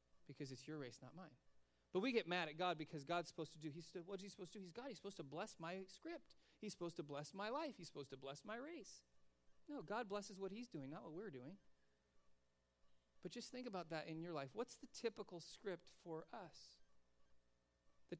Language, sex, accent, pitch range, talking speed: English, male, American, 140-170 Hz, 230 wpm